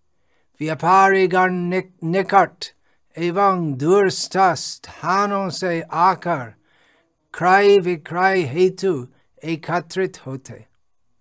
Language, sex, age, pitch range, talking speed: Hindi, male, 60-79, 140-180 Hz, 65 wpm